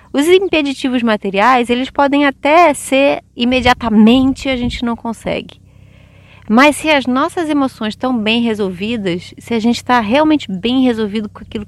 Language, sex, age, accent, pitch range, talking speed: Portuguese, female, 20-39, Brazilian, 190-255 Hz, 150 wpm